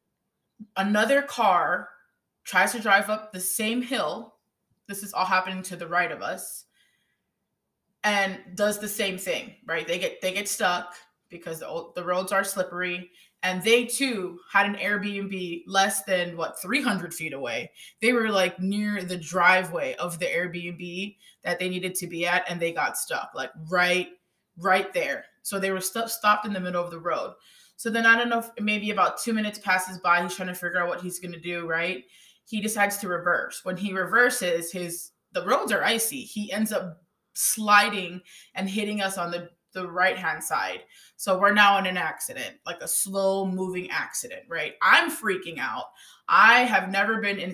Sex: female